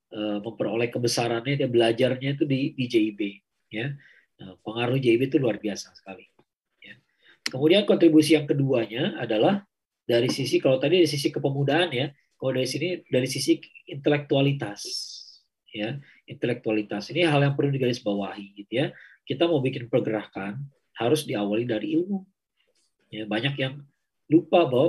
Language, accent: Indonesian, native